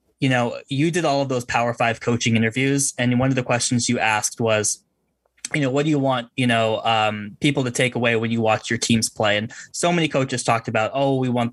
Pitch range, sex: 115-135 Hz, male